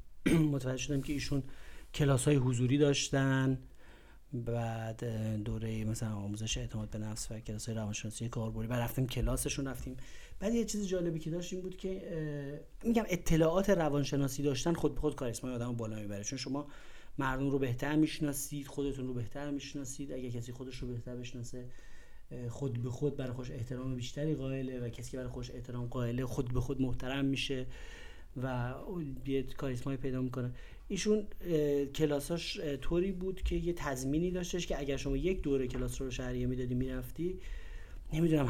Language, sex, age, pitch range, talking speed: Persian, male, 30-49, 120-150 Hz, 160 wpm